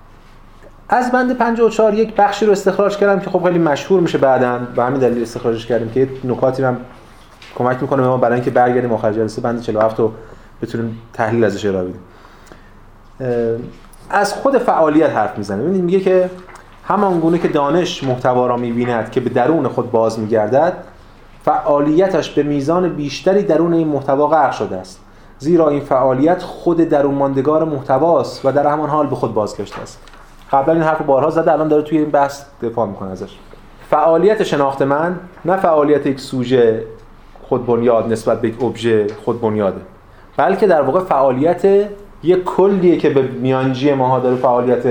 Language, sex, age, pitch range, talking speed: Persian, male, 30-49, 120-170 Hz, 165 wpm